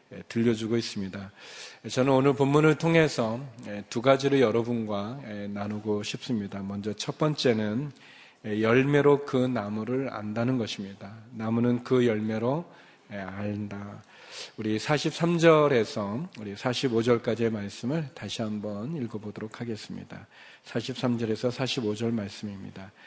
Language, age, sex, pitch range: Korean, 40-59, male, 105-130 Hz